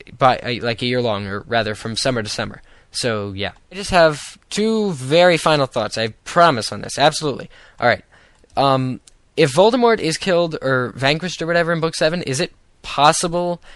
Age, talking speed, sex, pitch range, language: 10-29, 170 wpm, male, 115-160 Hz, English